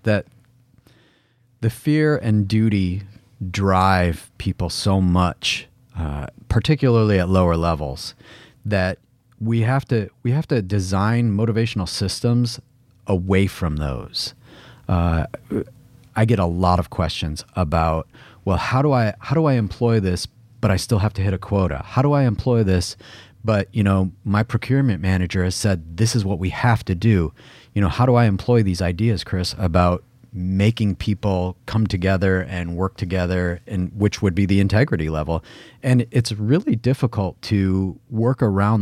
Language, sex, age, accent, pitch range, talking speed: English, male, 30-49, American, 95-120 Hz, 160 wpm